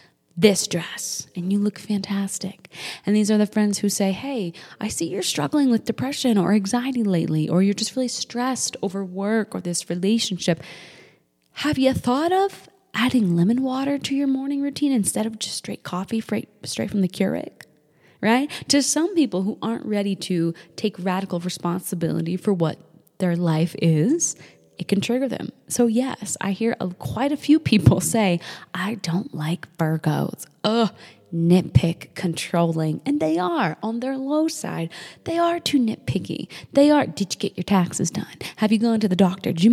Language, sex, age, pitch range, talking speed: English, female, 20-39, 175-235 Hz, 175 wpm